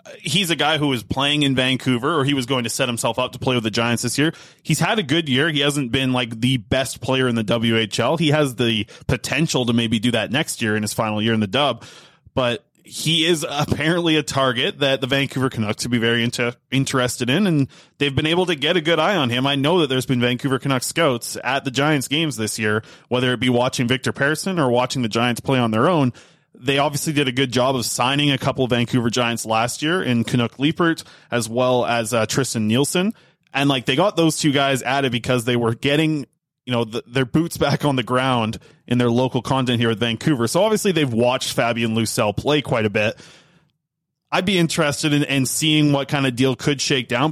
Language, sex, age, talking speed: English, male, 20-39, 235 wpm